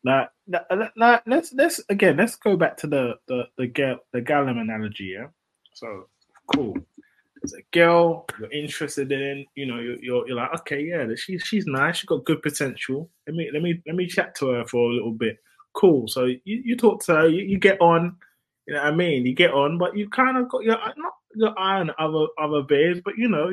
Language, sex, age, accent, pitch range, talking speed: English, male, 20-39, British, 150-225 Hz, 225 wpm